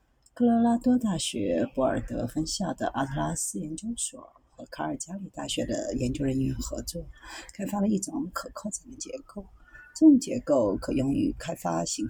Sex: female